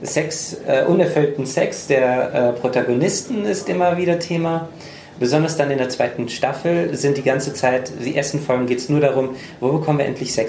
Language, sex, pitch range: German, male, 125-165 Hz